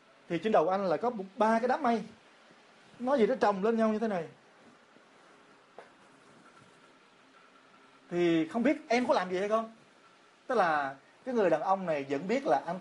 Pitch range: 150-215 Hz